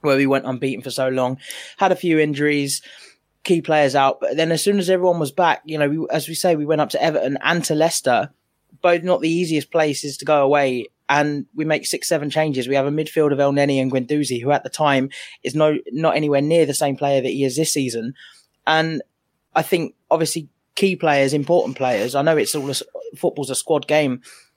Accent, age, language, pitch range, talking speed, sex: British, 20-39, English, 140-160 Hz, 225 wpm, male